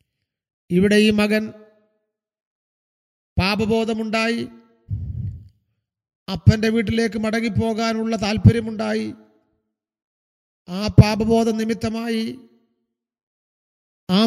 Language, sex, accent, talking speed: Malayalam, male, native, 50 wpm